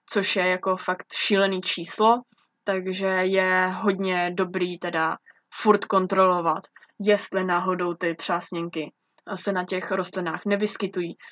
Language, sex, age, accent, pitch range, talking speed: Czech, female, 20-39, native, 180-210 Hz, 115 wpm